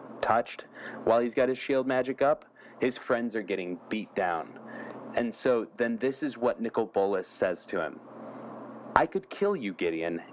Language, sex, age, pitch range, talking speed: English, male, 30-49, 100-125 Hz, 175 wpm